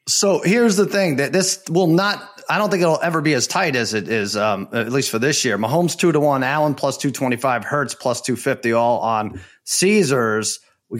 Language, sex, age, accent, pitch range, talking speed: English, male, 30-49, American, 125-175 Hz, 220 wpm